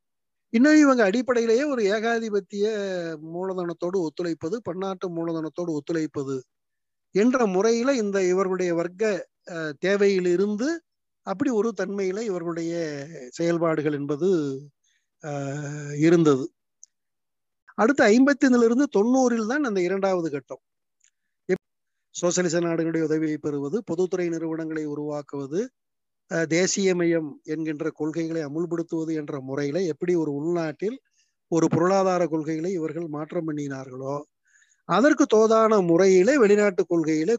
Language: Tamil